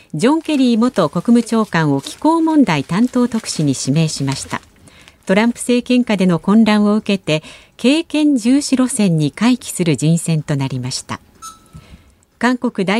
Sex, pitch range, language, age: female, 160-245 Hz, Japanese, 50-69